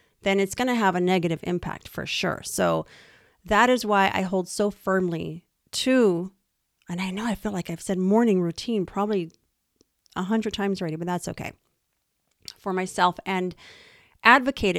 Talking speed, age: 165 wpm, 30-49